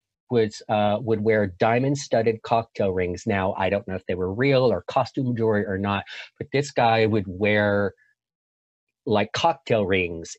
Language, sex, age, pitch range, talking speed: English, male, 40-59, 100-120 Hz, 165 wpm